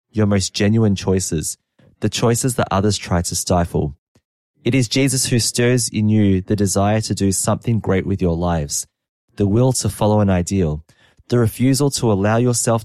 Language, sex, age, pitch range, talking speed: English, male, 20-39, 90-110 Hz, 180 wpm